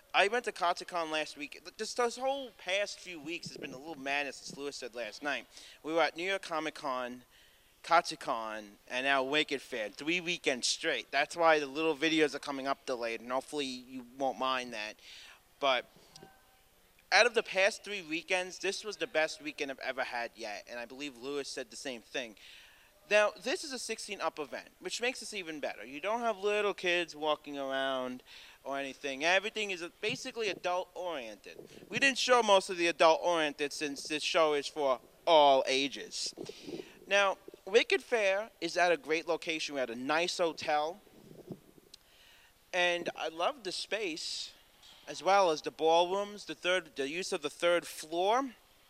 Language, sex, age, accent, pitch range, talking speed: English, male, 30-49, American, 140-195 Hz, 185 wpm